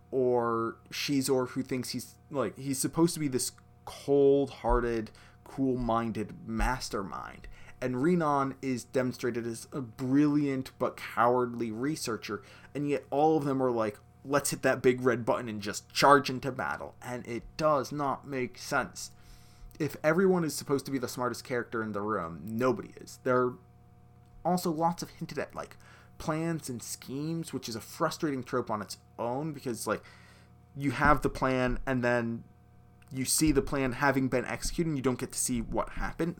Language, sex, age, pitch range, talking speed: English, male, 20-39, 120-155 Hz, 175 wpm